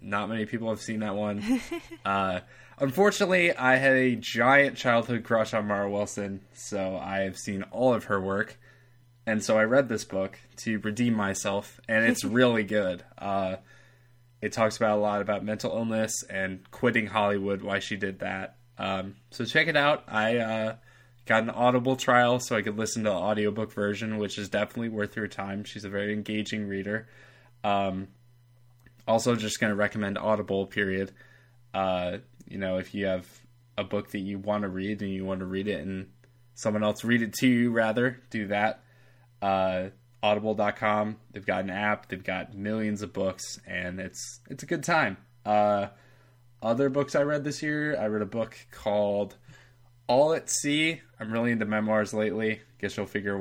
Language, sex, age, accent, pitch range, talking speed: English, male, 20-39, American, 100-120 Hz, 180 wpm